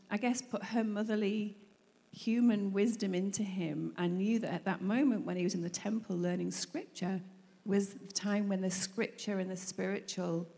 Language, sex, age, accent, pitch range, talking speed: English, female, 40-59, British, 175-215 Hz, 180 wpm